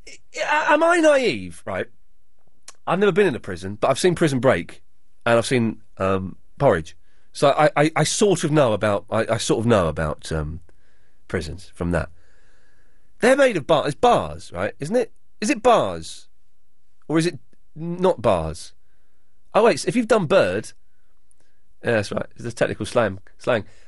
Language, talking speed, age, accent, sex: English, 175 wpm, 30-49, British, male